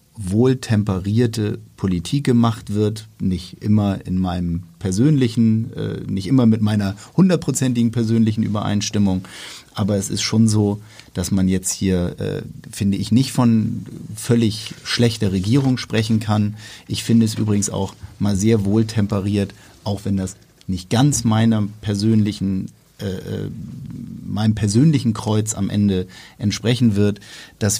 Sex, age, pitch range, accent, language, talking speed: male, 50-69, 100-115 Hz, German, German, 130 wpm